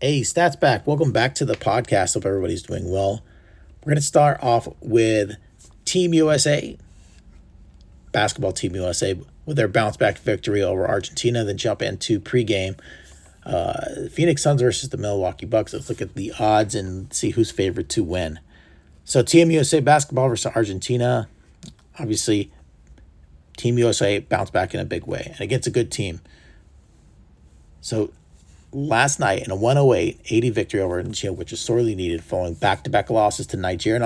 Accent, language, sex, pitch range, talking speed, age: American, English, male, 90-125 Hz, 160 wpm, 40-59